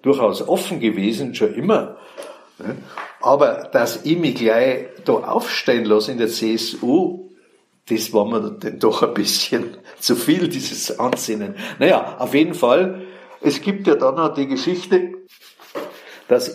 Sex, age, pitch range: male, 60-79, 135-210 Hz